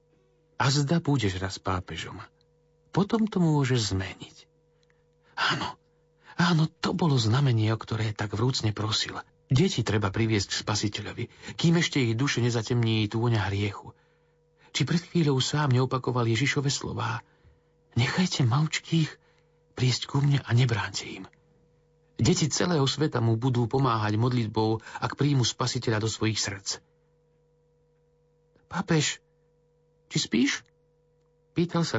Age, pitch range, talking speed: 50-69, 120-160 Hz, 120 wpm